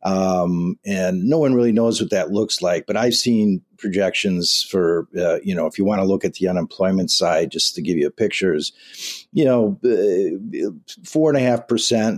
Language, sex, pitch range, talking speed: English, male, 95-135 Hz, 200 wpm